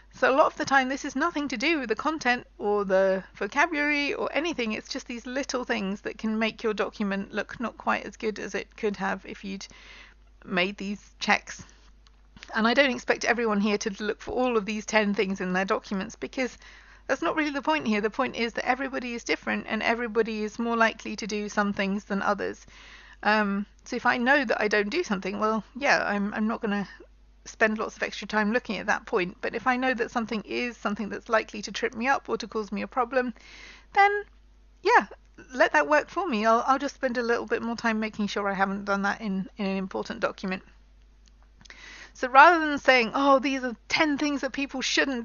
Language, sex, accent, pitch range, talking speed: English, female, British, 210-265 Hz, 225 wpm